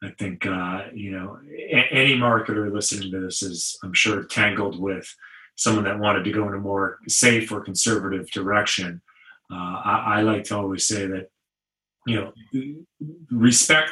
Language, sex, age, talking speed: English, male, 30-49, 170 wpm